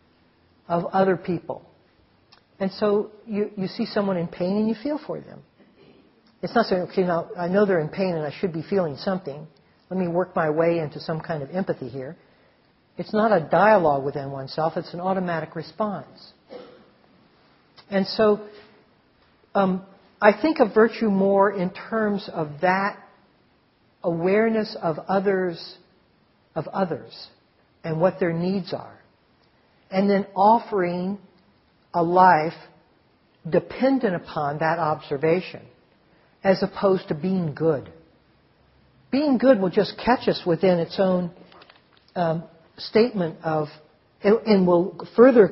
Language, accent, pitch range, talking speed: English, American, 165-205 Hz, 135 wpm